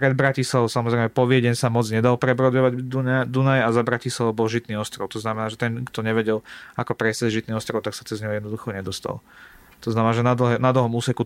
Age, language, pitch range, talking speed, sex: 30-49, Slovak, 115-125 Hz, 215 wpm, male